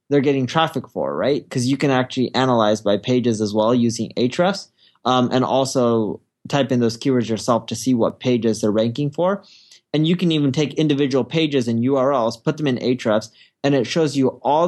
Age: 20-39